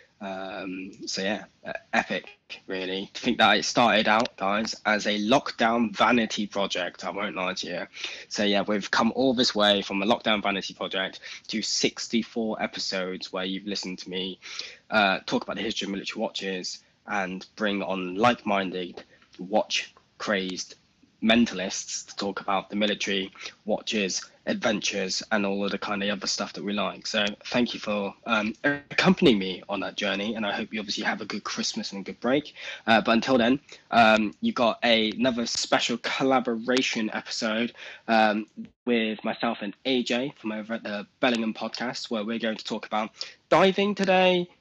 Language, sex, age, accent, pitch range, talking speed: English, male, 10-29, British, 95-120 Hz, 175 wpm